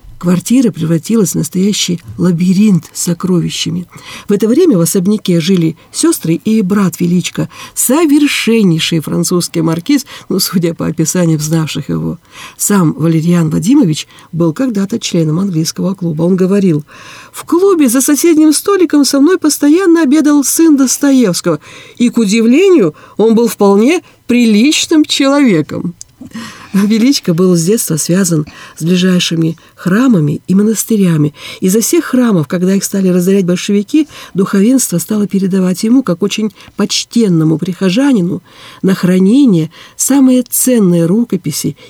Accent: native